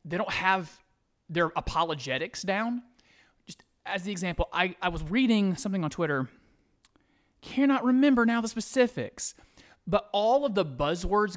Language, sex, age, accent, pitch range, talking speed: English, male, 30-49, American, 155-215 Hz, 145 wpm